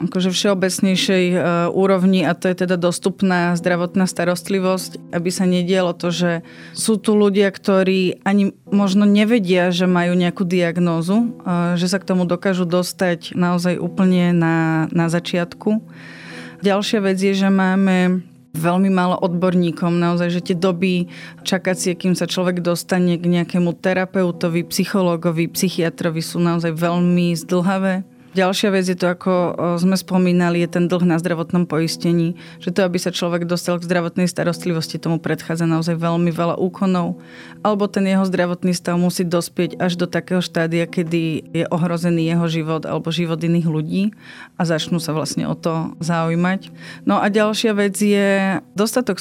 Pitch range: 170-190 Hz